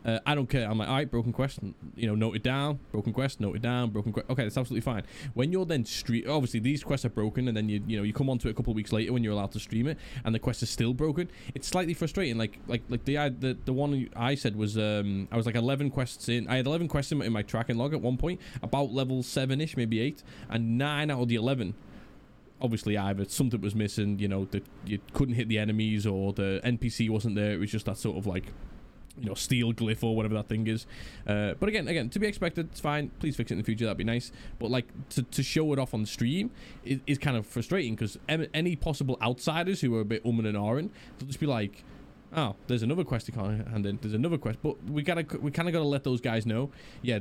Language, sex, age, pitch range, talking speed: English, male, 10-29, 110-140 Hz, 270 wpm